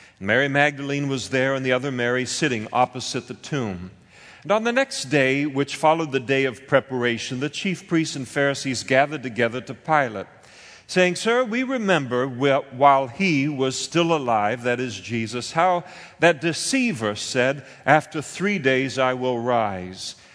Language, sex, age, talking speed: English, male, 50-69, 160 wpm